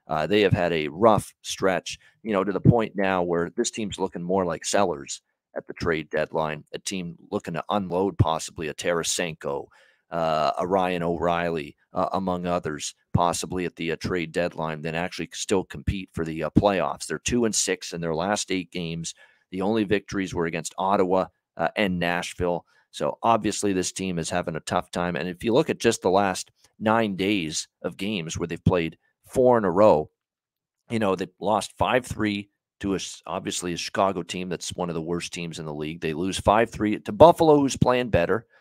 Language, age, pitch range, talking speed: English, 40-59, 85-110 Hz, 195 wpm